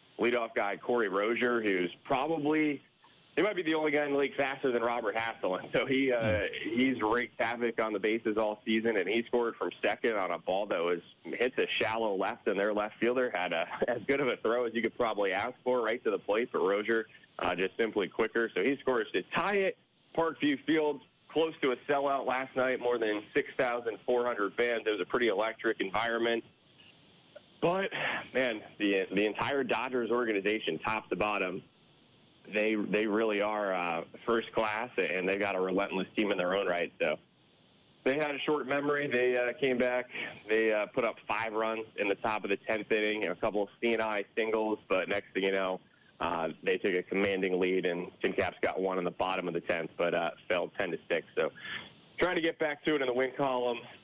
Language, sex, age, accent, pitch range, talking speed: English, male, 30-49, American, 105-135 Hz, 215 wpm